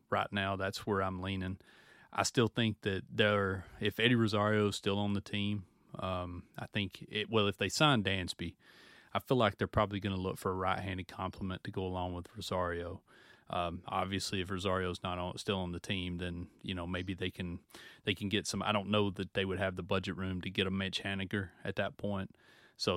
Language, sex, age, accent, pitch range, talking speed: English, male, 30-49, American, 90-100 Hz, 220 wpm